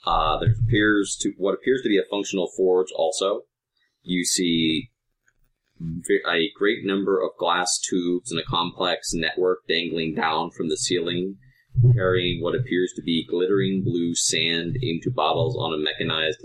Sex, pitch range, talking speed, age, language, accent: male, 90-135 Hz, 155 wpm, 20-39, English, American